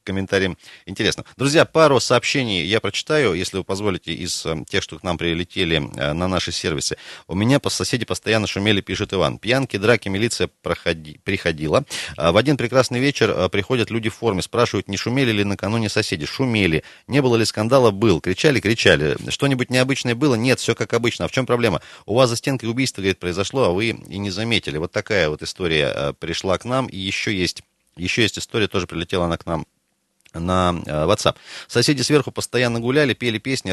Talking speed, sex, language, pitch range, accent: 185 wpm, male, Russian, 95-125 Hz, native